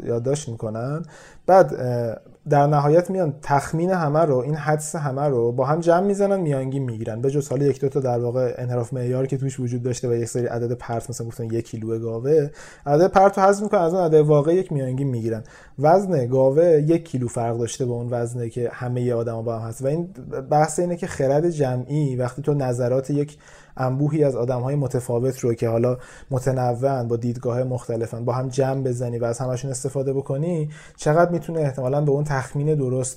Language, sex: Persian, male